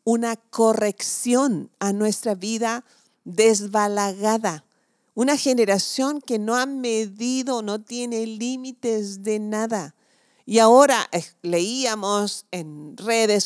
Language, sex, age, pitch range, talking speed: Spanish, female, 40-59, 180-235 Hz, 105 wpm